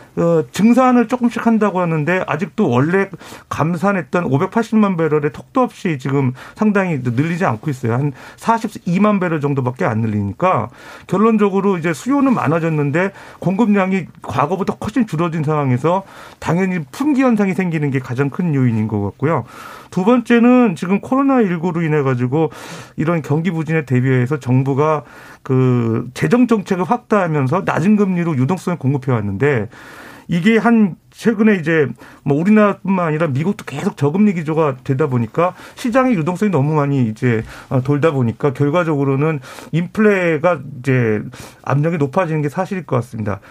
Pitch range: 140-200 Hz